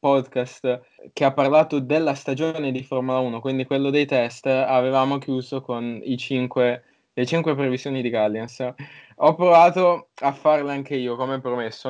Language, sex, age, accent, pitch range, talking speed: Italian, male, 10-29, native, 125-155 Hz, 155 wpm